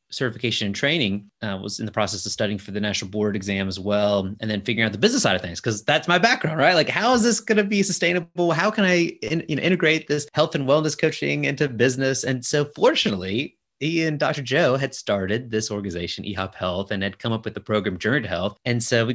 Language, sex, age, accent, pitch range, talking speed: English, male, 30-49, American, 105-155 Hz, 250 wpm